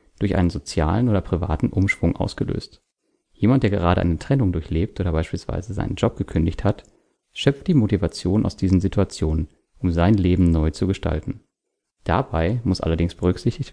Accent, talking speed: German, 155 wpm